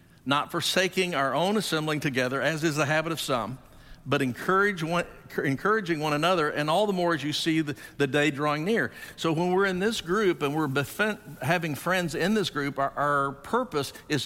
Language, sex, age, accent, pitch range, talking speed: English, male, 50-69, American, 130-165 Hz, 195 wpm